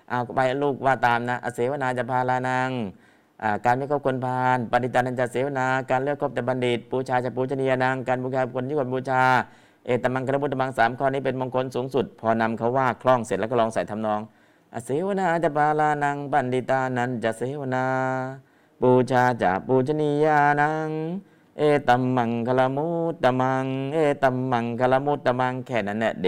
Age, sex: 60-79, male